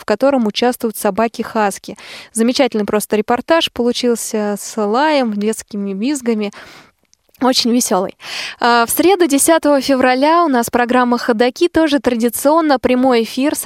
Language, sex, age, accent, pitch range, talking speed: Russian, female, 20-39, native, 220-275 Hz, 120 wpm